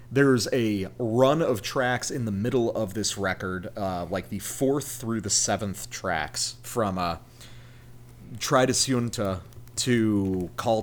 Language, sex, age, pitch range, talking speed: English, male, 30-49, 110-130 Hz, 135 wpm